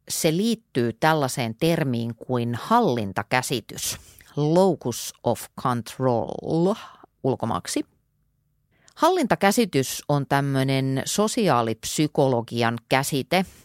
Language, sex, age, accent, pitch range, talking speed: Finnish, female, 30-49, native, 125-190 Hz, 65 wpm